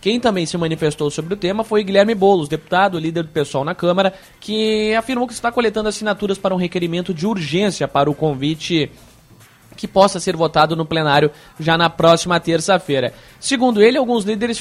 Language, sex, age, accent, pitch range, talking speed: Portuguese, male, 20-39, Brazilian, 155-200 Hz, 180 wpm